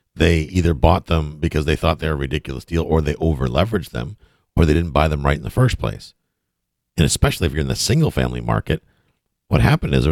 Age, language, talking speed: 50-69, English, 235 wpm